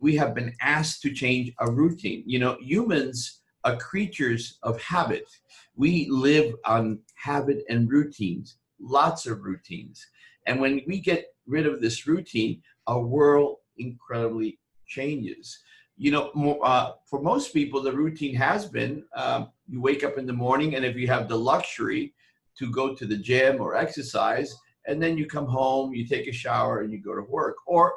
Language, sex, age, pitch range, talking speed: English, male, 50-69, 115-150 Hz, 175 wpm